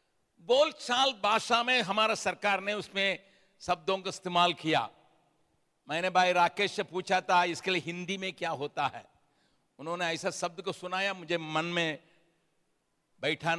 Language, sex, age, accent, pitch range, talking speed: Hindi, male, 60-79, native, 175-245 Hz, 145 wpm